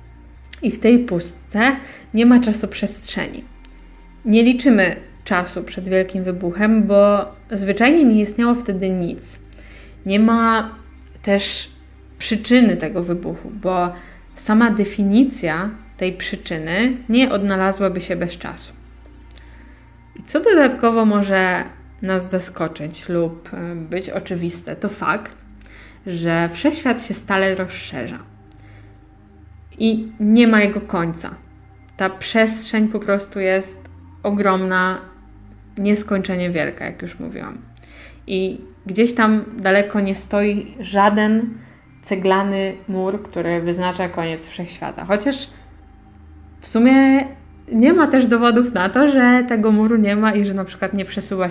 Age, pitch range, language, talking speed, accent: 20-39, 165-220 Hz, Polish, 120 wpm, native